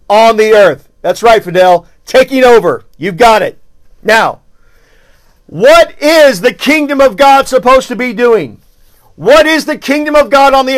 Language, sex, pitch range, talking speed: English, male, 235-295 Hz, 165 wpm